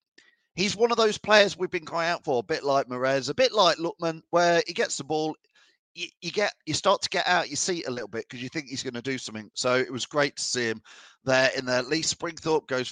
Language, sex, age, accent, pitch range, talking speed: English, male, 40-59, British, 135-195 Hz, 265 wpm